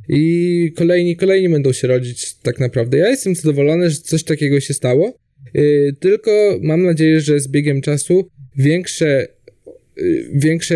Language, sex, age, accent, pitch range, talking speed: Polish, male, 20-39, native, 130-155 Hz, 140 wpm